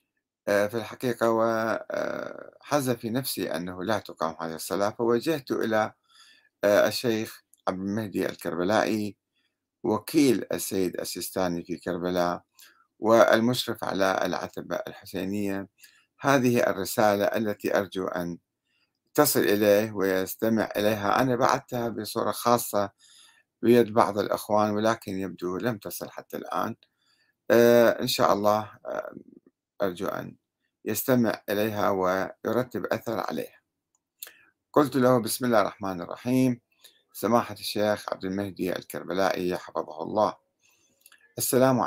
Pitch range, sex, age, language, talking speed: 95-120 Hz, male, 50-69, Arabic, 100 wpm